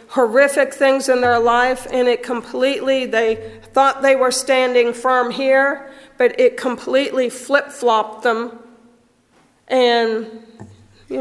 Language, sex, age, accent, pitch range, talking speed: English, female, 40-59, American, 230-260 Hz, 120 wpm